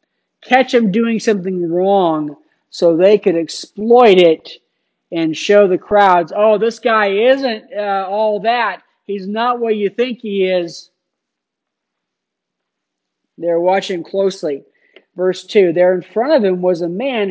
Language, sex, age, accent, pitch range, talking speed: English, male, 50-69, American, 170-220 Hz, 140 wpm